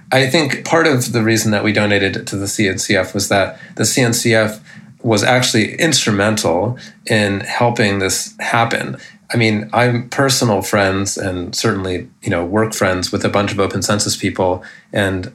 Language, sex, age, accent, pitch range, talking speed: English, male, 30-49, American, 95-115 Hz, 170 wpm